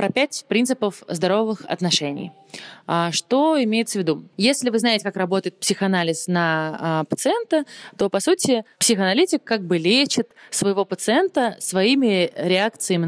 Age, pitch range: 20-39, 175-230 Hz